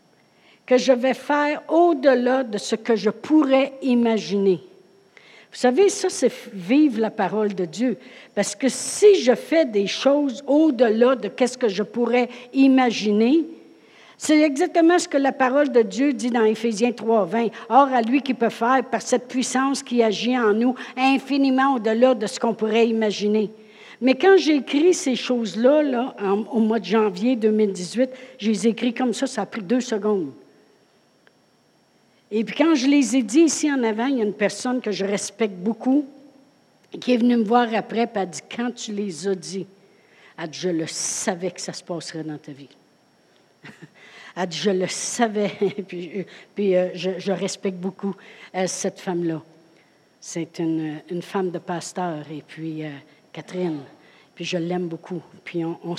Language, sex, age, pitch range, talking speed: French, female, 60-79, 190-260 Hz, 180 wpm